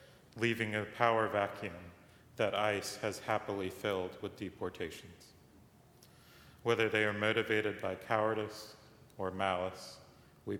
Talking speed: 115 wpm